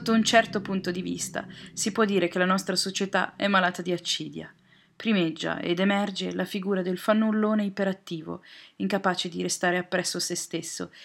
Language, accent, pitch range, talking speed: Italian, native, 175-200 Hz, 170 wpm